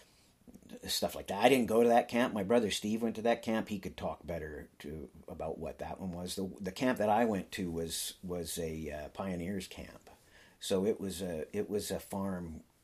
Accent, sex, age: American, male, 50-69